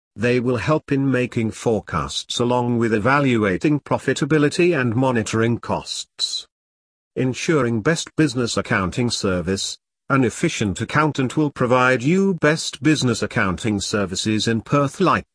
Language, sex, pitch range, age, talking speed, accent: English, male, 105-150 Hz, 50-69, 120 wpm, British